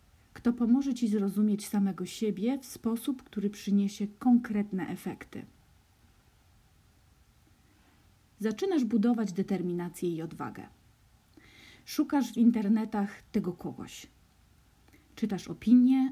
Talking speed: 90 wpm